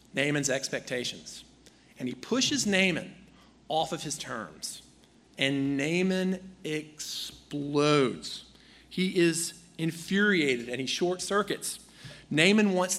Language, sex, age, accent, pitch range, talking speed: English, male, 40-59, American, 140-185 Hz, 100 wpm